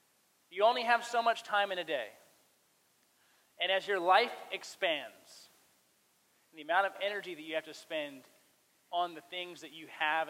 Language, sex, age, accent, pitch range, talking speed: English, male, 30-49, American, 175-250 Hz, 170 wpm